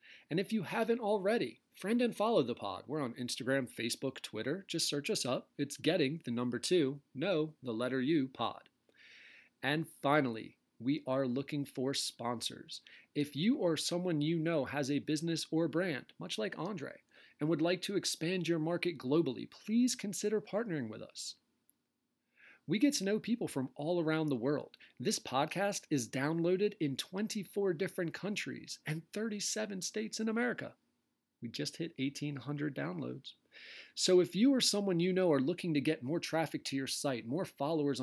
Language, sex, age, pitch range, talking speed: English, male, 30-49, 135-185 Hz, 170 wpm